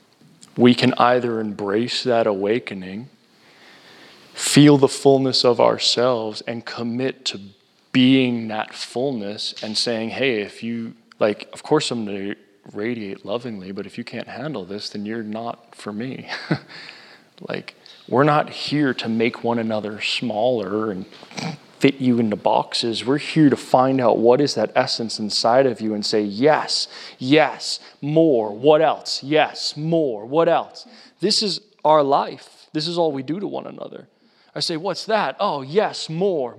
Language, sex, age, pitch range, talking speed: English, male, 20-39, 115-145 Hz, 155 wpm